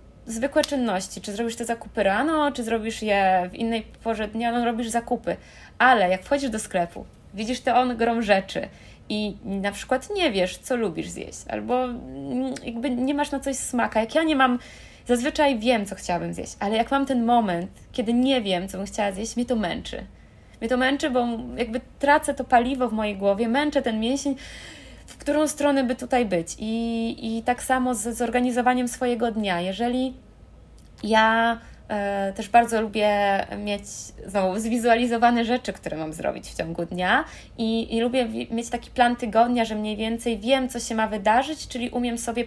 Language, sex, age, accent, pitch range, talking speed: Polish, female, 20-39, native, 220-260 Hz, 175 wpm